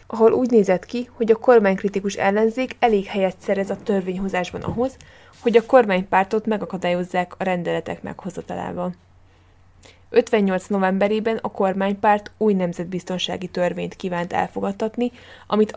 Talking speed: 120 wpm